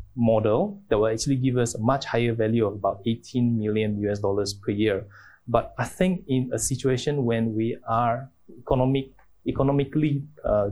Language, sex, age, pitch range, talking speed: English, male, 20-39, 110-135 Hz, 170 wpm